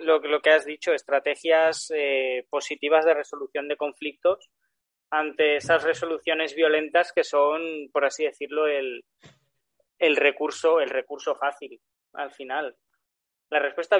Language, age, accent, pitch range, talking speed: Spanish, 20-39, Spanish, 145-190 Hz, 130 wpm